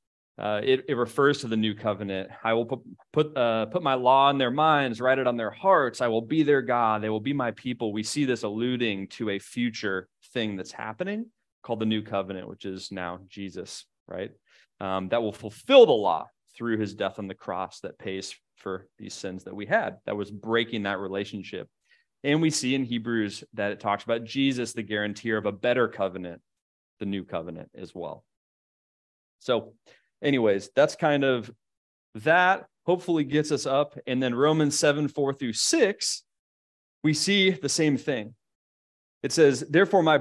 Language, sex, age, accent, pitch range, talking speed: English, male, 30-49, American, 105-140 Hz, 185 wpm